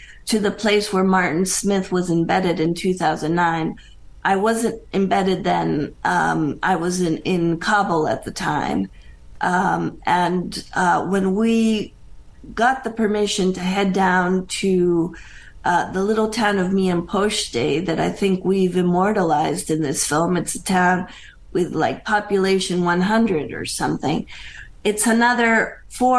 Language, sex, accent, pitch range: English, female, American, 180-210 Hz